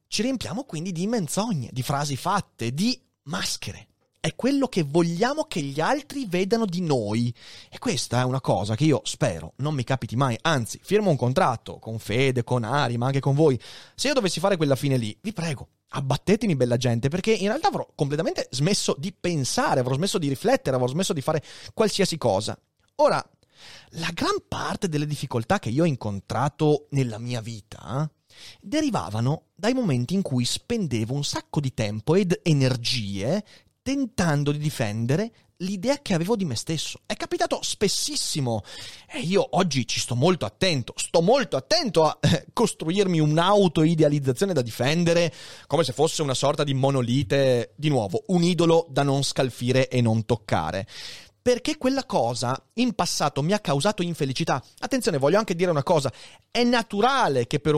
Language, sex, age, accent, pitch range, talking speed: Italian, male, 30-49, native, 130-195 Hz, 170 wpm